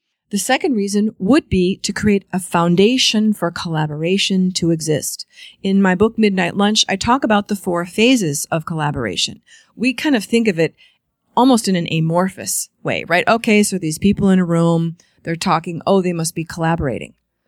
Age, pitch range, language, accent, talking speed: 30-49, 170-230 Hz, English, American, 180 wpm